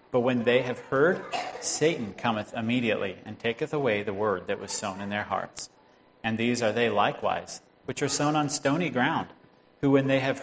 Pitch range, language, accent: 95-130 Hz, English, American